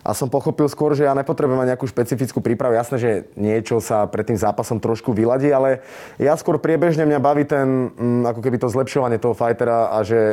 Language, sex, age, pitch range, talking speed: Slovak, male, 20-39, 115-135 Hz, 205 wpm